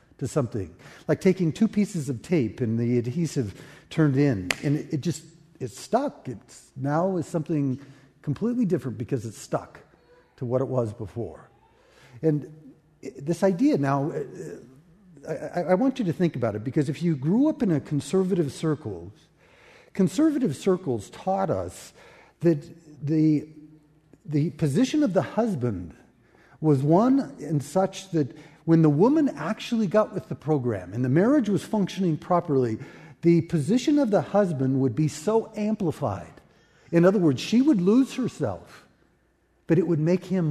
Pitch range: 135-190 Hz